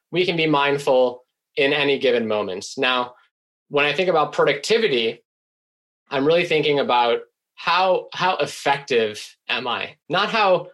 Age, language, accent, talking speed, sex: 20-39, English, American, 140 wpm, male